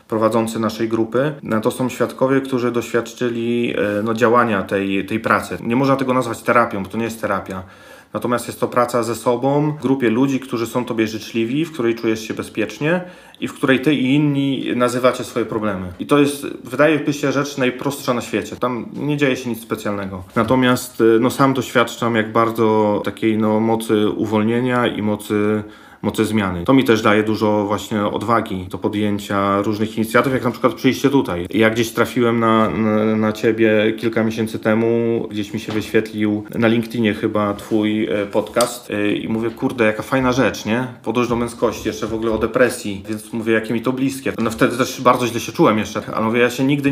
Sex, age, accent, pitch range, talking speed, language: male, 40-59, native, 110-125 Hz, 185 wpm, Polish